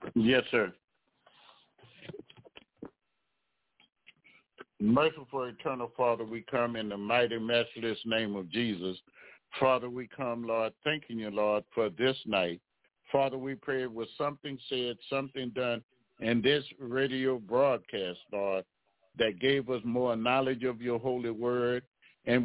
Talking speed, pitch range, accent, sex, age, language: 125 wpm, 105-130 Hz, American, male, 60-79, English